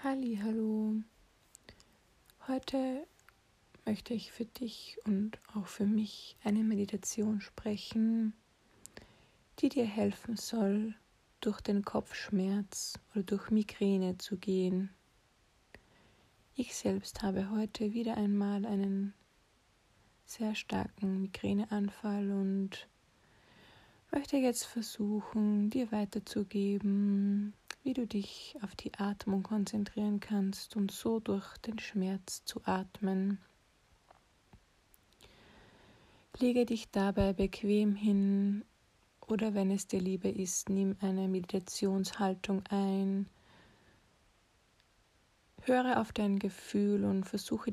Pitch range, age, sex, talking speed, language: 195-215 Hz, 20-39, female, 95 wpm, German